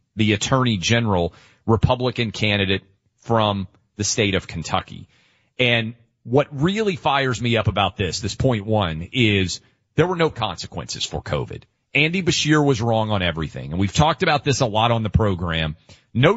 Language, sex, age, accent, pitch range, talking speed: English, male, 40-59, American, 100-130 Hz, 165 wpm